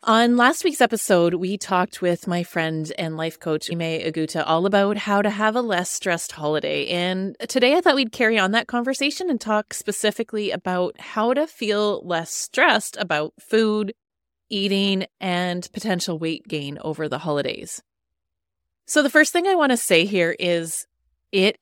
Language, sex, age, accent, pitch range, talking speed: English, female, 30-49, American, 165-215 Hz, 170 wpm